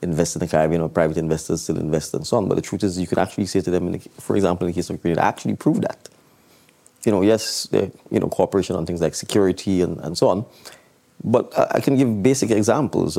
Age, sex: 20-39, male